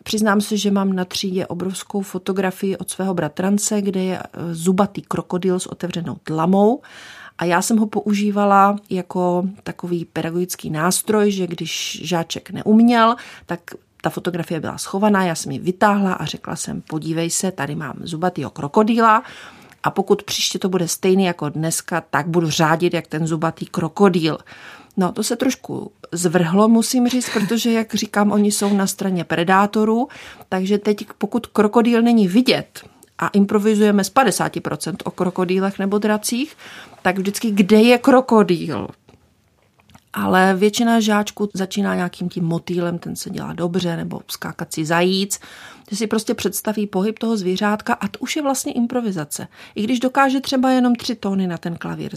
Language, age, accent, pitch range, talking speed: Czech, 40-59, native, 175-215 Hz, 155 wpm